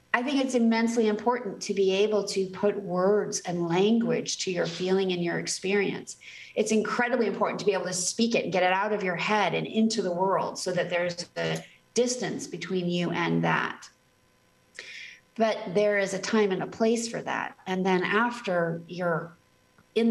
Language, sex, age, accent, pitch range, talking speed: English, female, 40-59, American, 185-225 Hz, 190 wpm